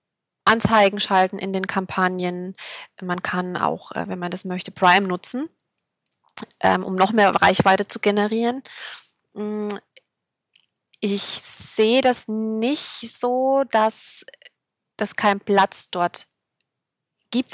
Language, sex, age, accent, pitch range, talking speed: German, female, 20-39, German, 190-220 Hz, 105 wpm